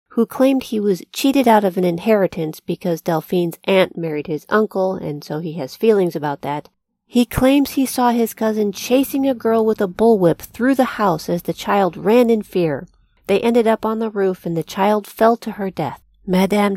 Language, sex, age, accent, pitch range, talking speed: English, female, 40-59, American, 170-220 Hz, 205 wpm